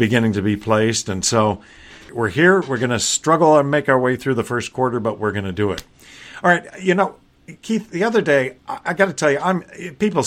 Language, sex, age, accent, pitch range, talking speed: English, male, 50-69, American, 105-145 Hz, 240 wpm